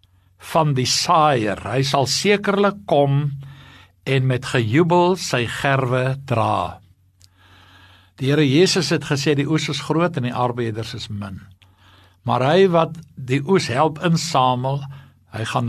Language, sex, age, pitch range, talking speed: English, male, 60-79, 120-155 Hz, 135 wpm